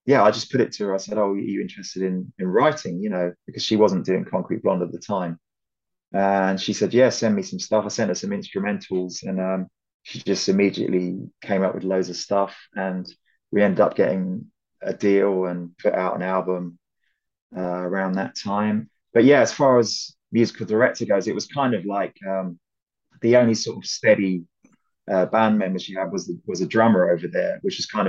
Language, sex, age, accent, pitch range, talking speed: English, male, 20-39, British, 90-110 Hz, 215 wpm